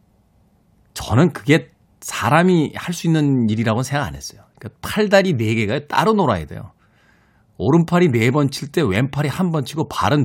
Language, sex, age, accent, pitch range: Korean, male, 40-59, native, 110-155 Hz